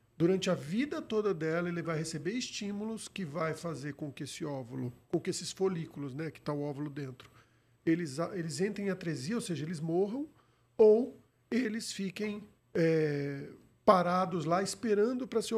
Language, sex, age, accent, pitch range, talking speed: Portuguese, male, 50-69, Brazilian, 150-195 Hz, 175 wpm